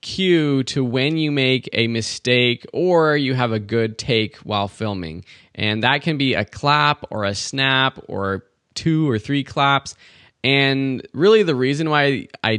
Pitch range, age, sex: 105-140 Hz, 20-39, male